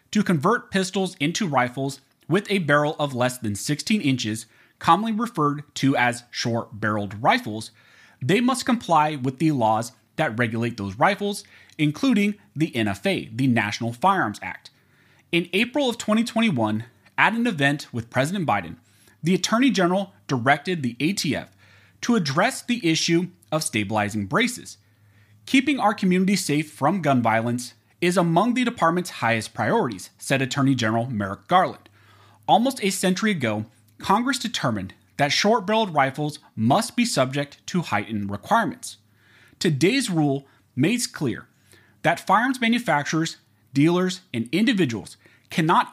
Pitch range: 115-190 Hz